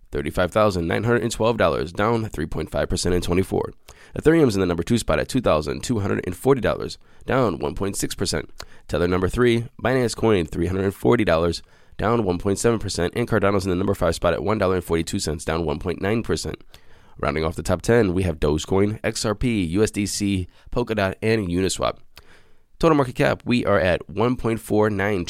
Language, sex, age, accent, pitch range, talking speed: English, male, 20-39, American, 85-110 Hz, 125 wpm